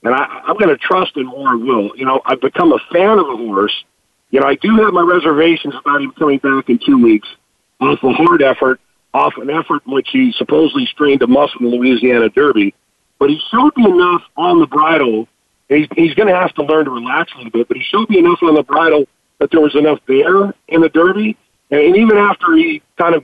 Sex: male